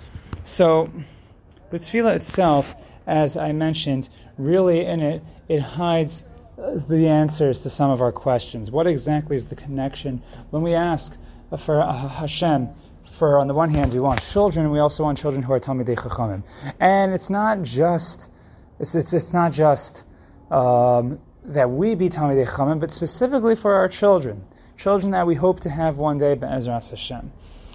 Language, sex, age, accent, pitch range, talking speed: English, male, 30-49, American, 125-160 Hz, 160 wpm